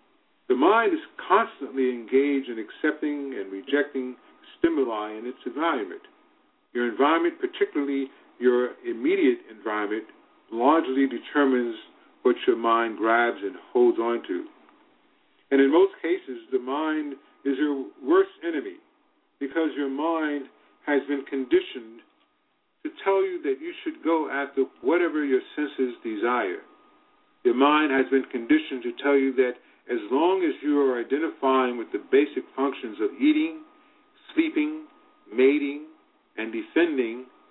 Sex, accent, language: male, American, English